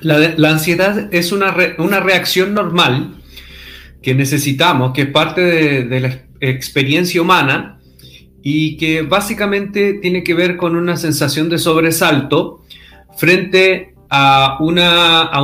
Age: 40-59